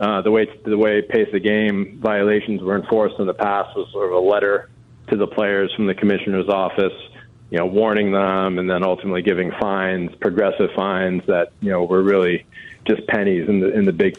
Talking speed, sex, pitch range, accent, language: 205 wpm, male, 100-110 Hz, American, English